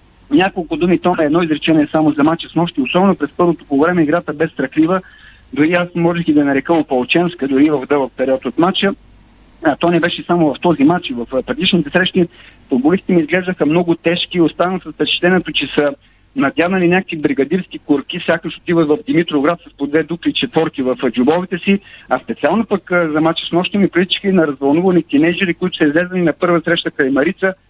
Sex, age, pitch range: male, 50-69, 150-180 Hz